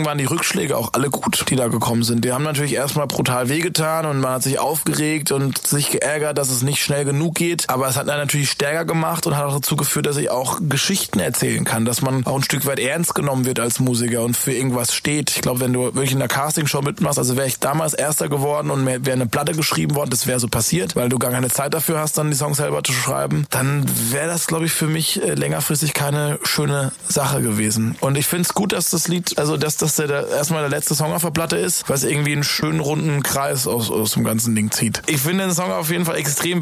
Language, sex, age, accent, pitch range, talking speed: German, male, 20-39, German, 140-165 Hz, 255 wpm